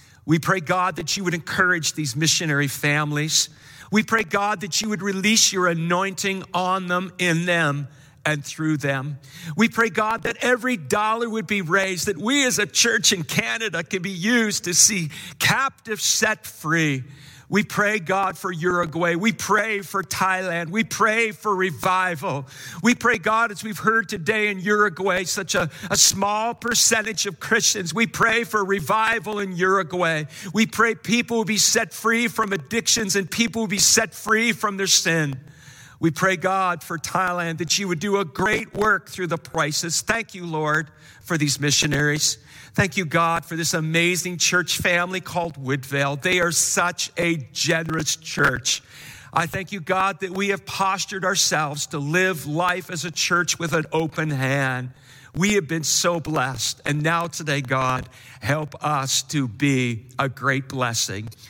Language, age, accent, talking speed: English, 50-69, American, 170 wpm